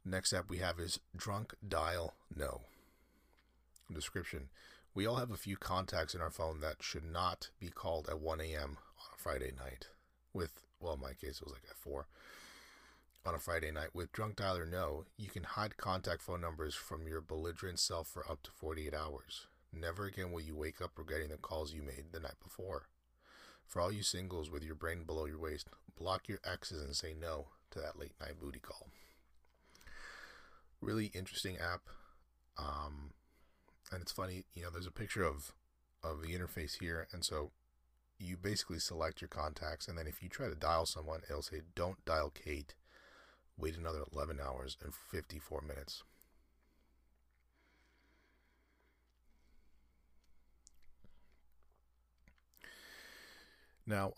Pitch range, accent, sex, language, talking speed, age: 70-90 Hz, American, male, English, 160 wpm, 30-49